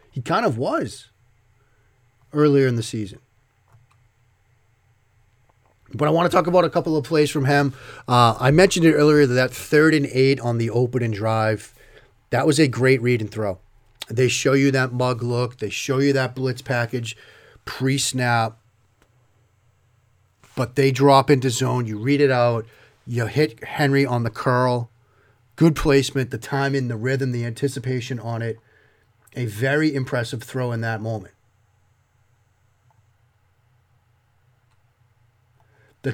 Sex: male